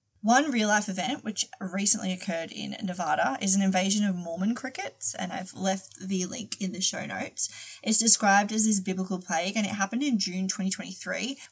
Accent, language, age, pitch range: Australian, English, 20-39, 185-215 Hz